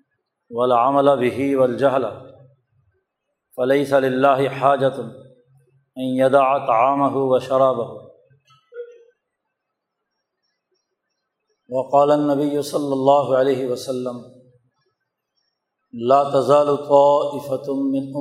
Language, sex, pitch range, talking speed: Urdu, male, 125-140 Hz, 40 wpm